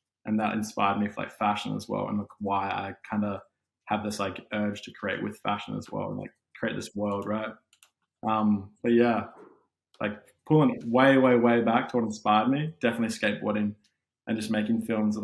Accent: Australian